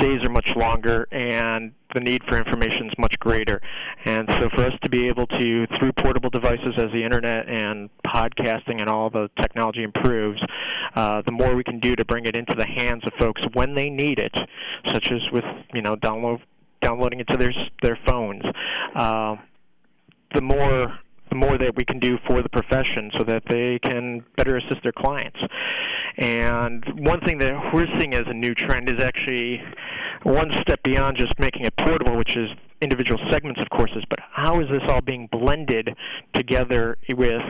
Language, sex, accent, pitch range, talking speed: English, male, American, 115-130 Hz, 185 wpm